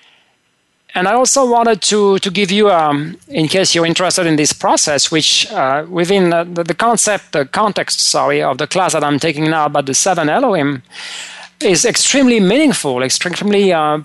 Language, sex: English, male